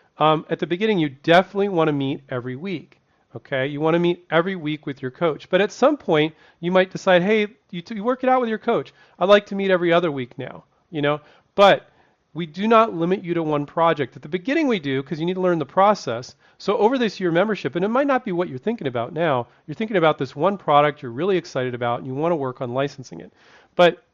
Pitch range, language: 135-180 Hz, English